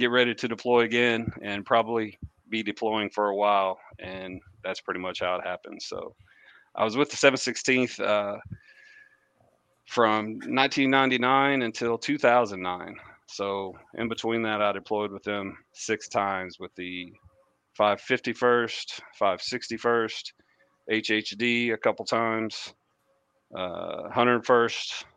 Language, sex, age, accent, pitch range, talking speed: English, male, 40-59, American, 105-120 Hz, 120 wpm